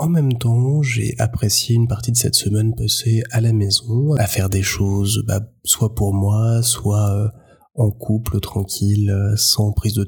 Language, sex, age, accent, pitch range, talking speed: French, male, 20-39, French, 100-115 Hz, 175 wpm